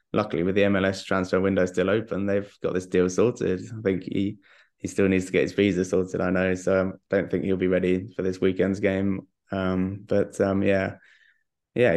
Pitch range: 95-100 Hz